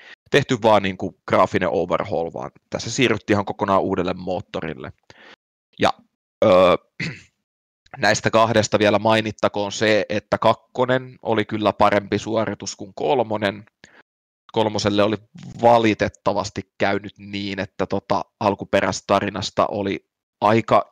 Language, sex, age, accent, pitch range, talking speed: Finnish, male, 30-49, native, 95-110 Hz, 105 wpm